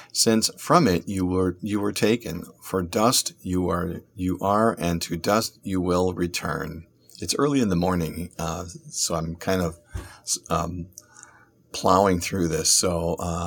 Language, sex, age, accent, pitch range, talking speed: English, male, 50-69, American, 85-115 Hz, 160 wpm